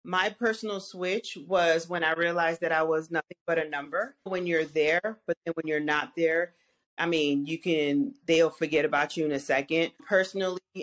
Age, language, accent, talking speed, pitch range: 30-49, English, American, 195 wpm, 145-185 Hz